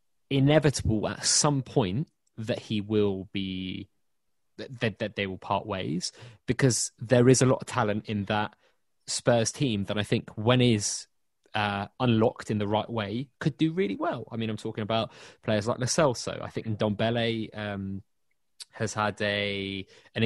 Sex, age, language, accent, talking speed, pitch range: male, 20-39, English, British, 165 wpm, 105-125 Hz